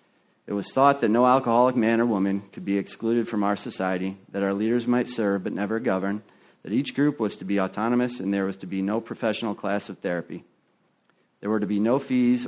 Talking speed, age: 220 wpm, 40-59